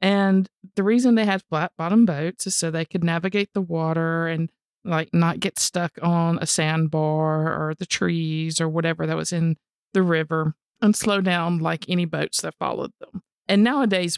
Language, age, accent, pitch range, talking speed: English, 50-69, American, 160-190 Hz, 185 wpm